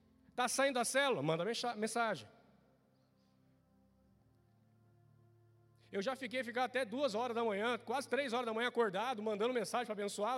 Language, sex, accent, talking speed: Portuguese, male, Brazilian, 145 wpm